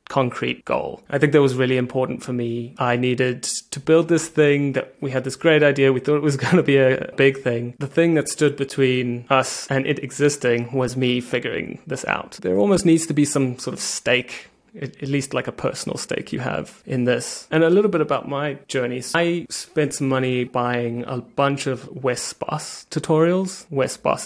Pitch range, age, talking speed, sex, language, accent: 125-150 Hz, 20-39, 210 wpm, male, English, British